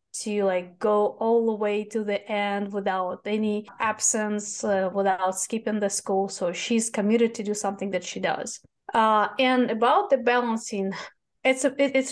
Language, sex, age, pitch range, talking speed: English, female, 20-39, 200-245 Hz, 175 wpm